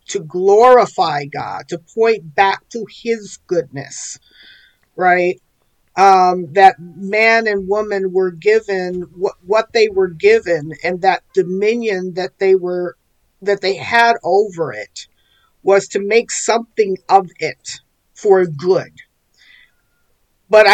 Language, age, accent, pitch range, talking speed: English, 50-69, American, 175-210 Hz, 120 wpm